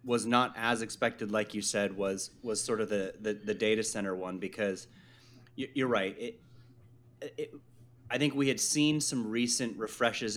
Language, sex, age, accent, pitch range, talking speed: English, male, 30-49, American, 100-120 Hz, 175 wpm